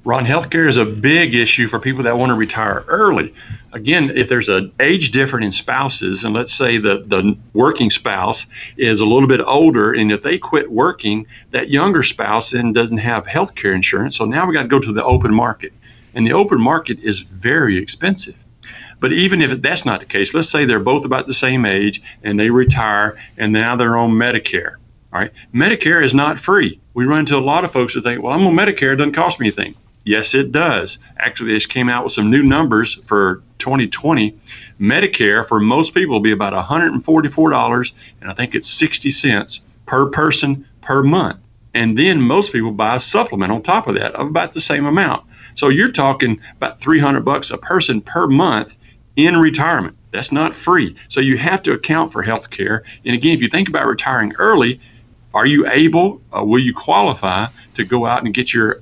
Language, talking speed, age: English, 210 wpm, 50-69